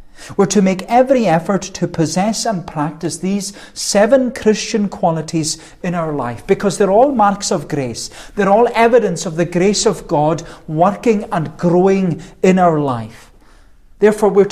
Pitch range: 140-195 Hz